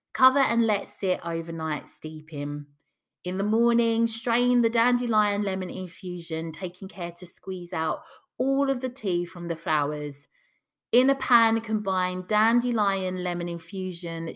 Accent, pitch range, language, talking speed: British, 165-245 Hz, English, 140 wpm